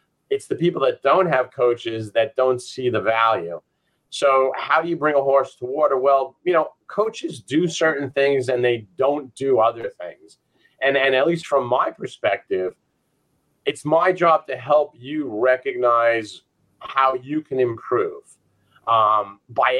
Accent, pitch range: American, 120-150 Hz